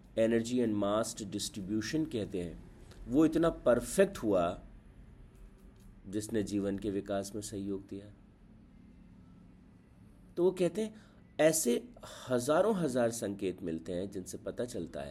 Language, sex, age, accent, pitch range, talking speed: Hindi, male, 50-69, native, 100-125 Hz, 120 wpm